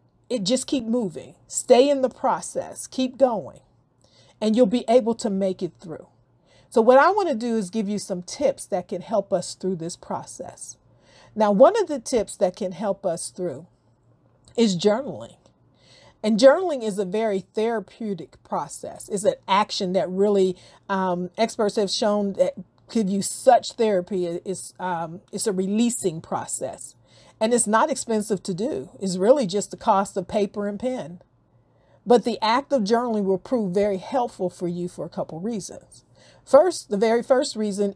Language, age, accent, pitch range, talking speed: English, 40-59, American, 190-235 Hz, 170 wpm